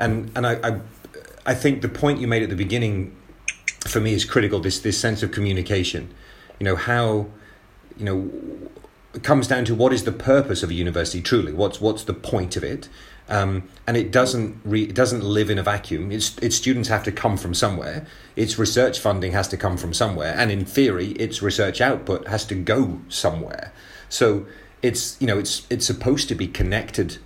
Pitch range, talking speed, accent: 95-120 Hz, 205 wpm, British